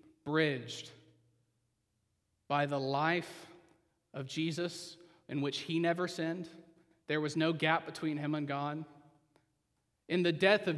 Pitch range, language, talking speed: 135-180 Hz, English, 130 wpm